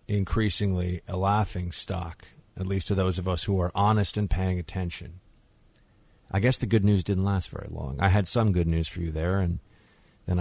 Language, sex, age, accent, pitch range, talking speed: English, male, 30-49, American, 90-115 Hz, 200 wpm